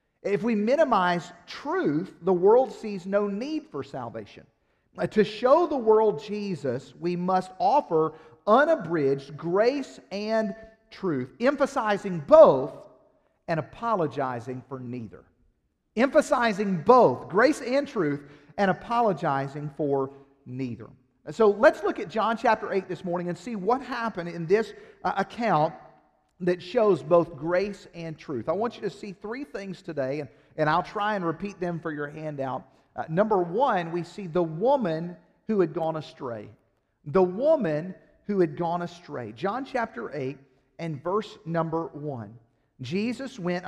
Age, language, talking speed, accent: 50-69, English, 145 wpm, American